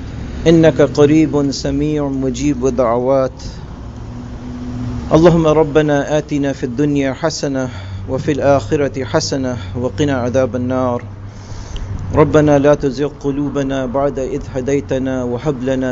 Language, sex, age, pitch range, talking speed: English, male, 50-69, 115-140 Hz, 95 wpm